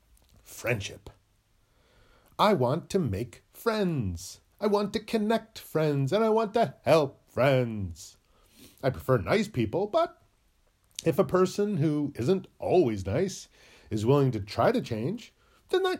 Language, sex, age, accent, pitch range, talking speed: English, male, 40-59, American, 115-185 Hz, 140 wpm